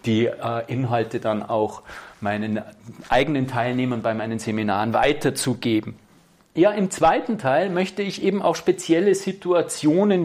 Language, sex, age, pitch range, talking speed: German, male, 40-59, 140-180 Hz, 125 wpm